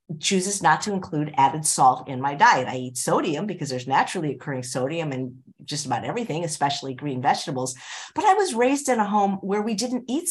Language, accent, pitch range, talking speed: English, American, 150-225 Hz, 205 wpm